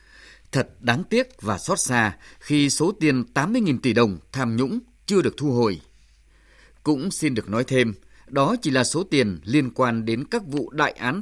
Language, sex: Vietnamese, male